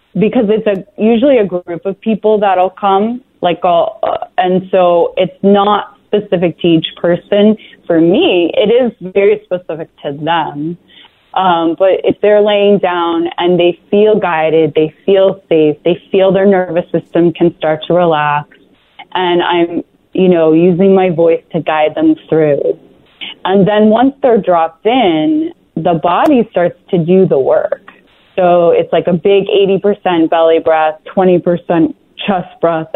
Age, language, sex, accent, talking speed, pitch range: 20-39, English, female, American, 160 wpm, 165-205 Hz